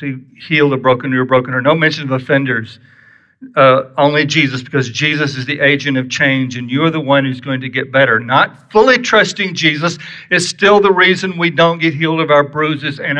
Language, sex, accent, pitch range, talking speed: English, male, American, 135-185 Hz, 215 wpm